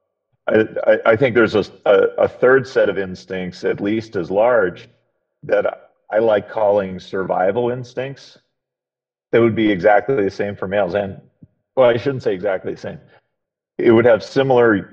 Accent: American